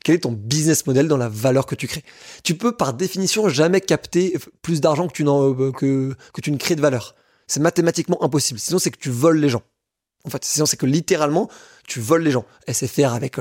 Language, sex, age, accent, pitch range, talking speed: French, male, 20-39, French, 135-170 Hz, 230 wpm